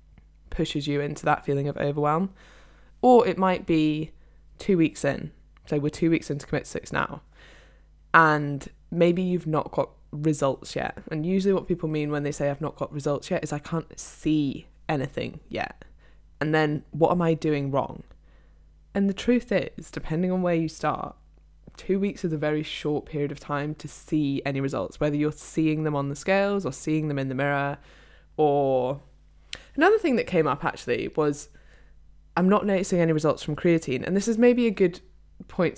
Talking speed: 190 wpm